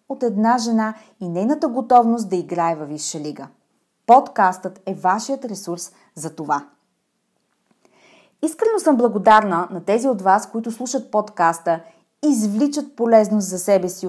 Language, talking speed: Bulgarian, 135 wpm